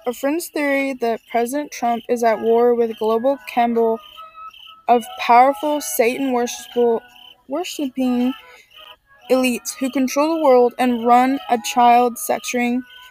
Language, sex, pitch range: English, female, 235-280 Hz